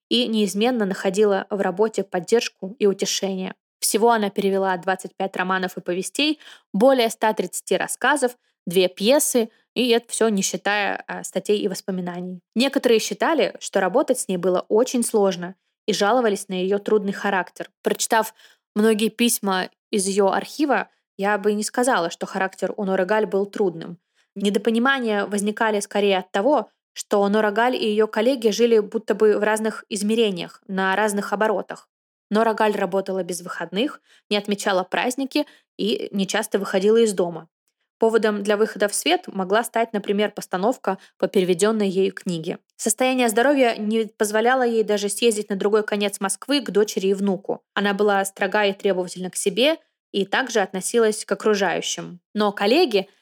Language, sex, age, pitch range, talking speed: Russian, female, 20-39, 195-225 Hz, 150 wpm